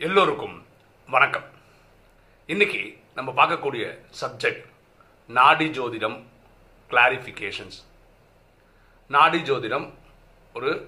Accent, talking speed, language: native, 65 wpm, Tamil